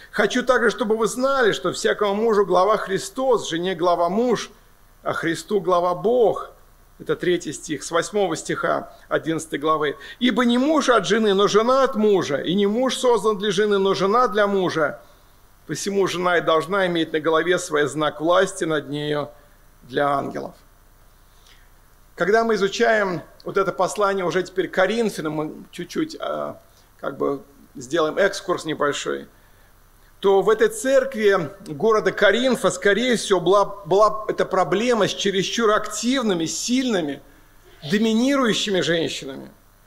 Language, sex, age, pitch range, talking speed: Russian, male, 50-69, 155-225 Hz, 140 wpm